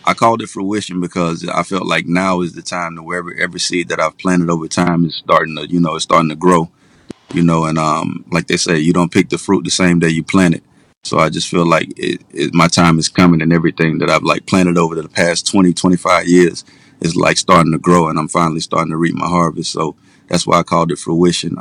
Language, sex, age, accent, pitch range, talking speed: English, male, 30-49, American, 85-90 Hz, 245 wpm